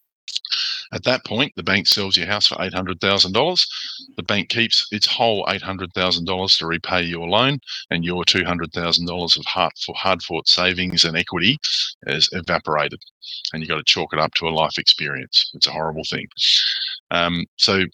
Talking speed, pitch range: 155 wpm, 85-100 Hz